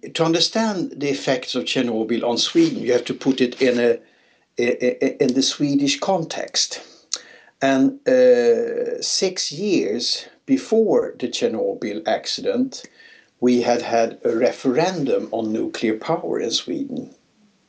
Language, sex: English, male